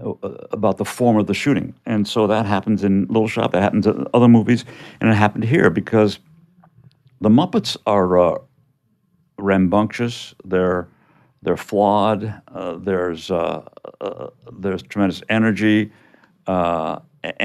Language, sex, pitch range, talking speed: English, male, 95-120 Hz, 135 wpm